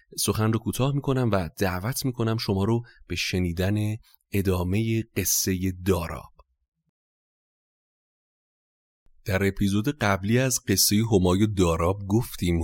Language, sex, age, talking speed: Persian, male, 30-49, 110 wpm